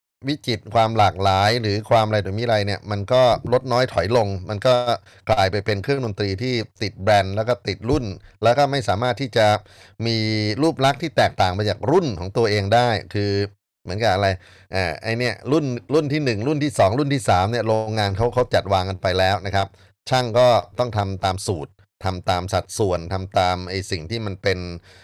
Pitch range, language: 100-125 Hz, Thai